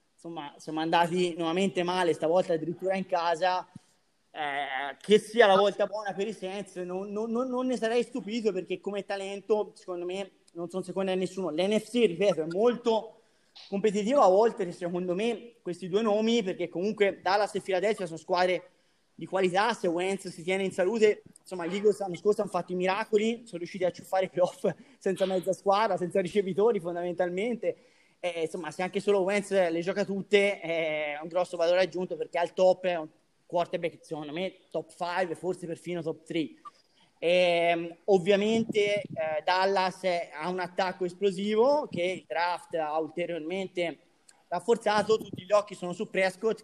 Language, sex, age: Italian, male, 20-39